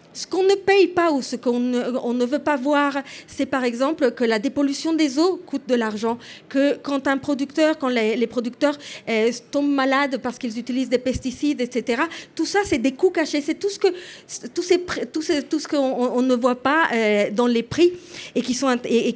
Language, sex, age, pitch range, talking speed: French, female, 40-59, 240-310 Hz, 180 wpm